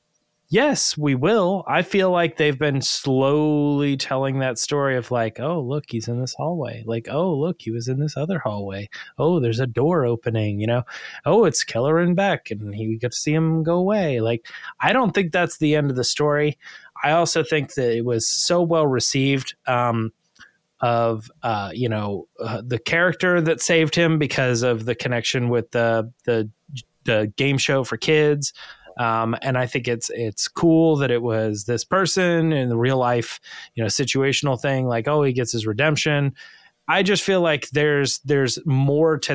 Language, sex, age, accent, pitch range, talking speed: English, male, 20-39, American, 120-150 Hz, 190 wpm